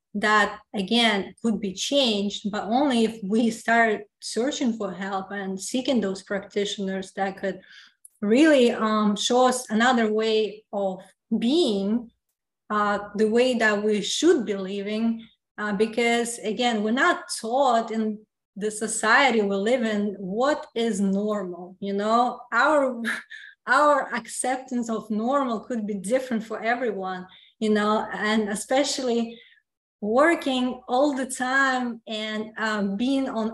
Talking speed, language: 130 wpm, English